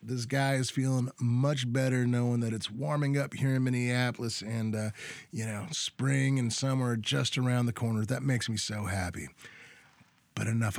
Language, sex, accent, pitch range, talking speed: English, male, American, 120-155 Hz, 185 wpm